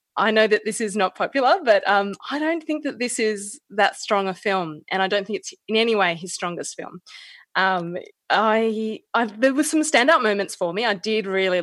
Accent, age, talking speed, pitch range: Australian, 20-39, 220 wpm, 175-225 Hz